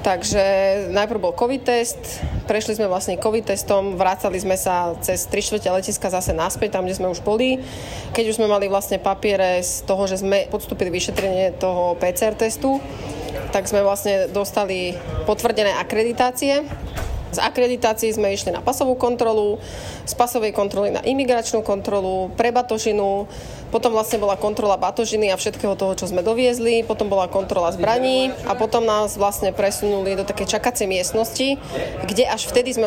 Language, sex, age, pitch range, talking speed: Slovak, female, 20-39, 195-240 Hz, 160 wpm